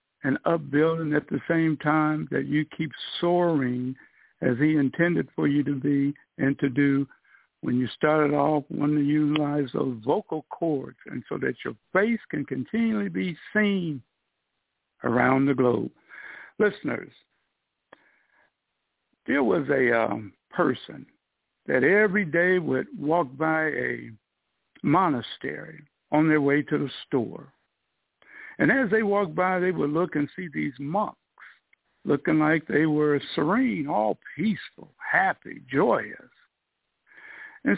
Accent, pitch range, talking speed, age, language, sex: American, 145-200 Hz, 135 wpm, 60-79, English, male